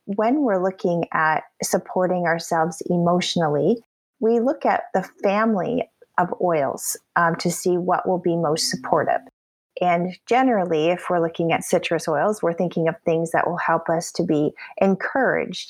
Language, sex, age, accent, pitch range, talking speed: English, female, 30-49, American, 165-190 Hz, 155 wpm